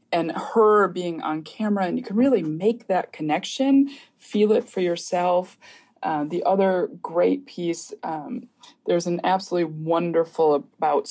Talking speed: 145 wpm